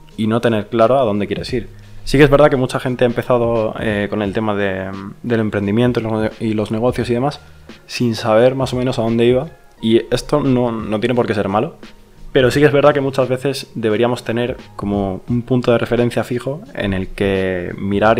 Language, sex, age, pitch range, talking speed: Spanish, male, 20-39, 110-130 Hz, 220 wpm